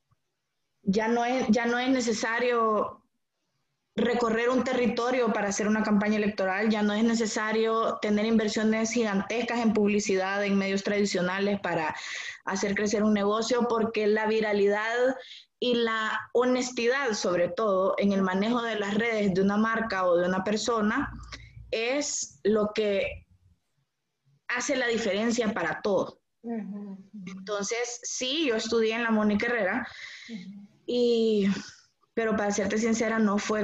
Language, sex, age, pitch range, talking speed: Spanish, female, 20-39, 195-230 Hz, 135 wpm